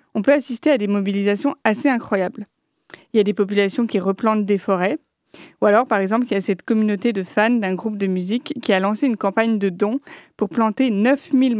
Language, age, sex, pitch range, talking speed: French, 30-49, female, 205-260 Hz, 215 wpm